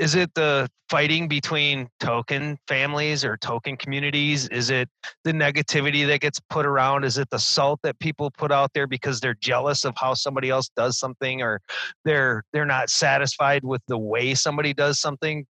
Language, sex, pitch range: English, male, 125-165 Hz